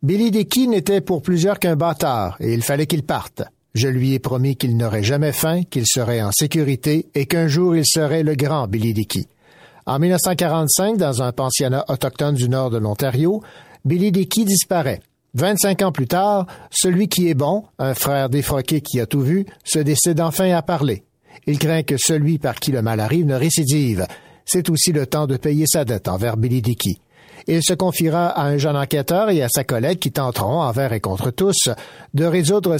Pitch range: 130-175 Hz